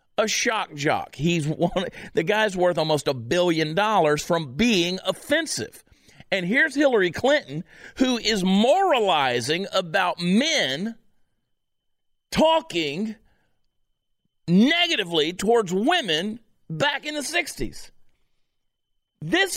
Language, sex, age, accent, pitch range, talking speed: English, male, 40-59, American, 170-275 Hz, 100 wpm